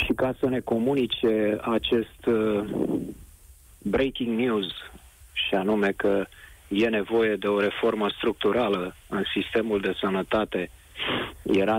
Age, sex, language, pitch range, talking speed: 40-59, male, Romanian, 95-135 Hz, 115 wpm